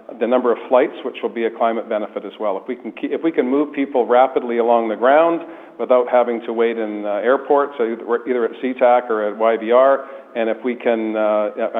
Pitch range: 110-125 Hz